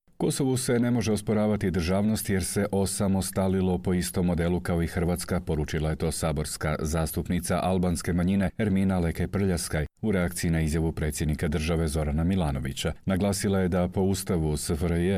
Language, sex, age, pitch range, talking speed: Croatian, male, 40-59, 80-100 Hz, 155 wpm